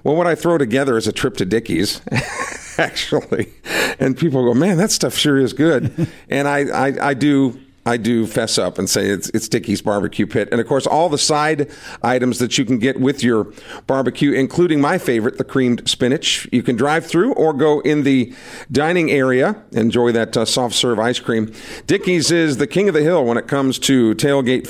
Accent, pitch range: American, 125-160 Hz